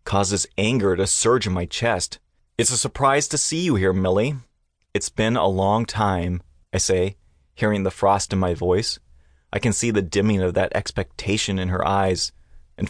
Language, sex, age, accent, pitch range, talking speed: English, male, 30-49, American, 90-115 Hz, 185 wpm